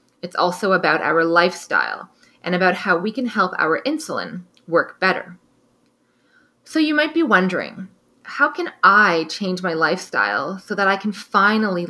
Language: English